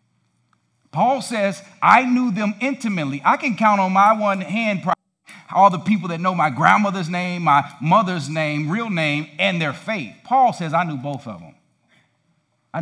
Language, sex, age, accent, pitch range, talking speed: English, male, 50-69, American, 150-195 Hz, 175 wpm